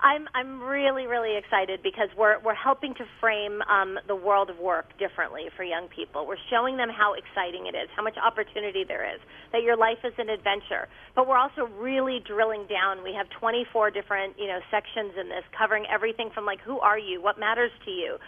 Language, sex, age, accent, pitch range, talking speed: English, female, 30-49, American, 205-245 Hz, 210 wpm